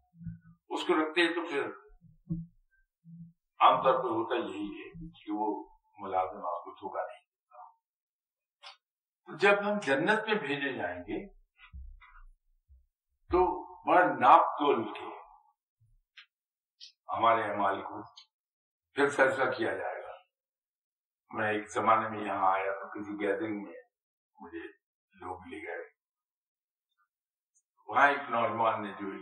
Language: English